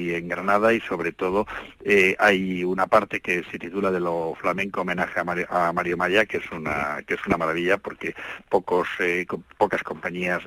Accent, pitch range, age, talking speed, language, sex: Spanish, 90-100 Hz, 50-69, 190 wpm, Spanish, male